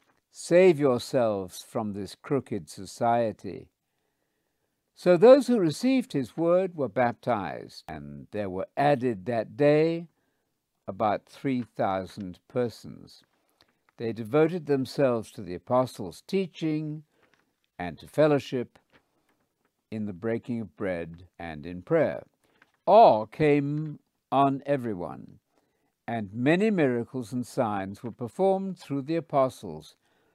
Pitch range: 105-145 Hz